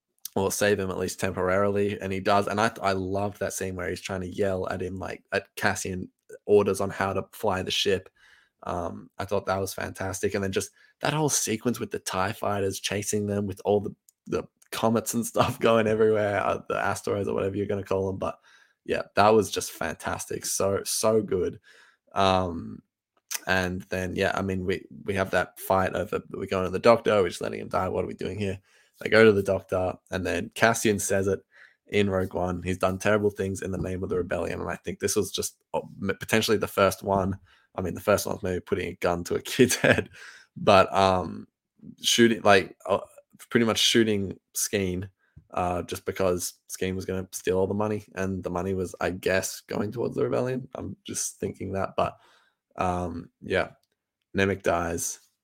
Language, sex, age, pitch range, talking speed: English, male, 10-29, 95-105 Hz, 205 wpm